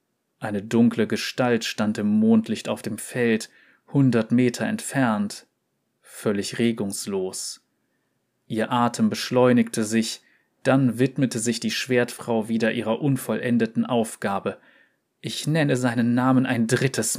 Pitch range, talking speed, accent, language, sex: 110-125 Hz, 115 wpm, German, German, male